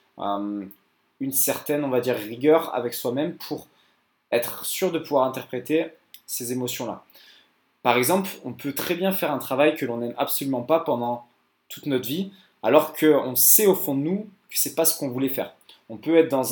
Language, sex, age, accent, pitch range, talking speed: French, male, 20-39, French, 125-165 Hz, 195 wpm